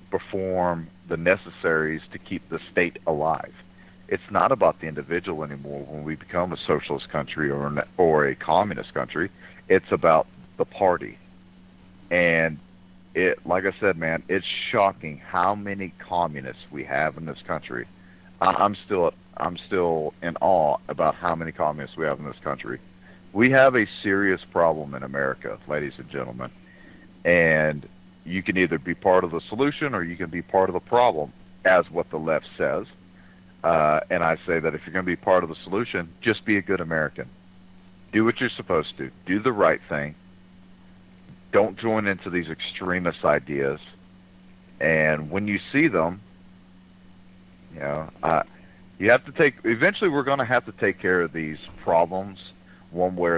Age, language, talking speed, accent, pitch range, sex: 50-69, English, 170 wpm, American, 80-95 Hz, male